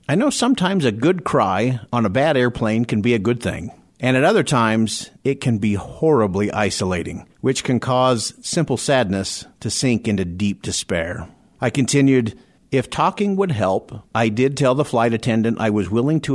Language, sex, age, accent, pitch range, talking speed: English, male, 50-69, American, 105-135 Hz, 185 wpm